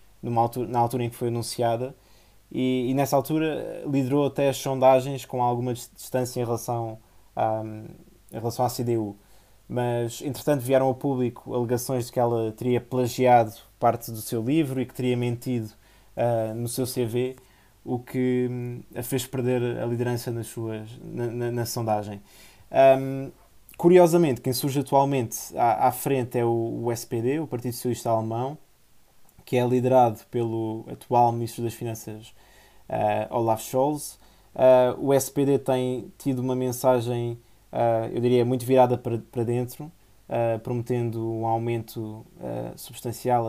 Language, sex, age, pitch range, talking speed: Portuguese, male, 20-39, 115-125 Hz, 140 wpm